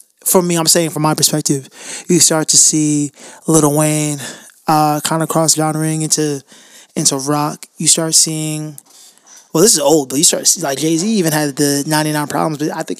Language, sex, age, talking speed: English, male, 20-39, 205 wpm